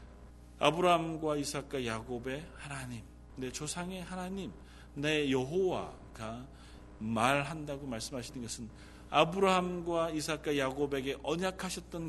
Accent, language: native, Korean